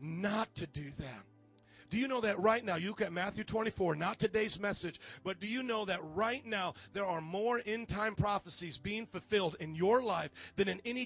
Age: 40-59